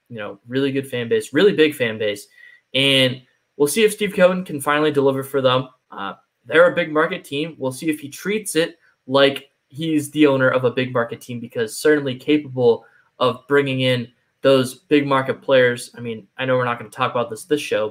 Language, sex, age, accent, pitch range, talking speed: English, male, 10-29, American, 120-160 Hz, 220 wpm